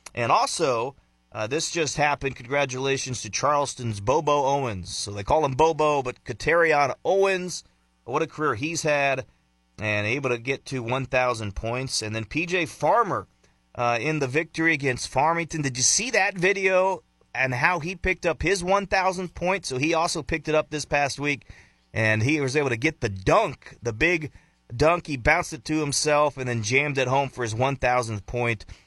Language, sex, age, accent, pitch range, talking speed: English, male, 30-49, American, 105-150 Hz, 185 wpm